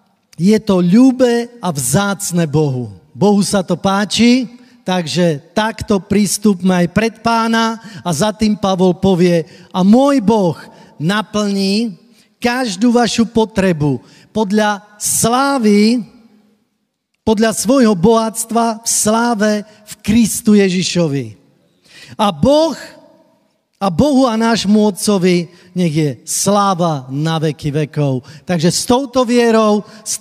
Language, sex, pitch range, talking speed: Slovak, male, 180-225 Hz, 110 wpm